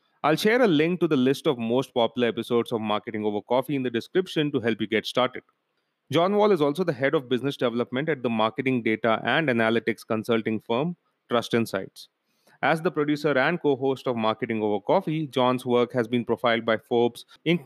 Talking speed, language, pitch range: 200 wpm, English, 115-150 Hz